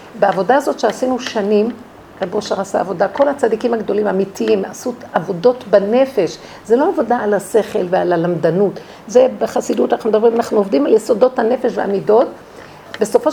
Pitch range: 220-300 Hz